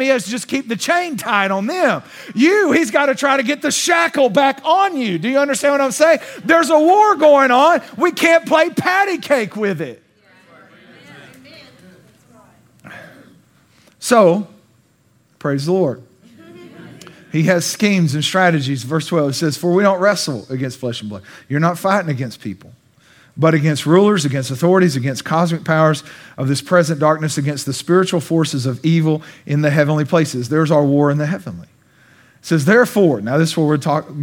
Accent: American